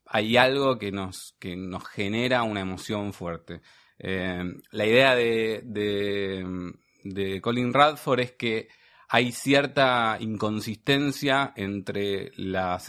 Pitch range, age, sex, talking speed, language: 95-125 Hz, 20-39, male, 105 wpm, Spanish